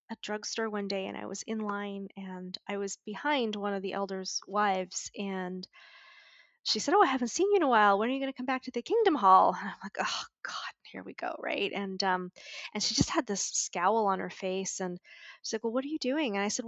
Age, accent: 20-39, American